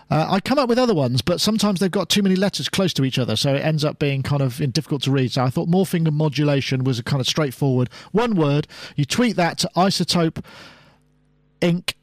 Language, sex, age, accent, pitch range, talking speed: English, male, 40-59, British, 135-180 Hz, 235 wpm